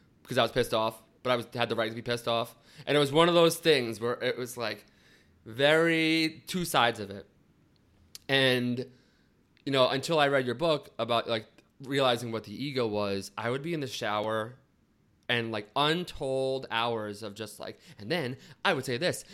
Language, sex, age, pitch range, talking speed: English, male, 20-39, 110-145 Hz, 200 wpm